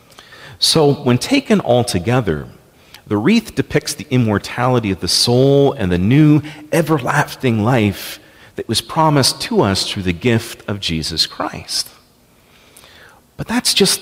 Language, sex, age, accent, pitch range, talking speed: English, male, 40-59, American, 90-130 Hz, 135 wpm